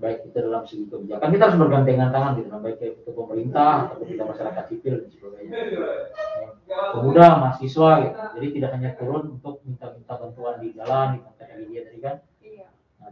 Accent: native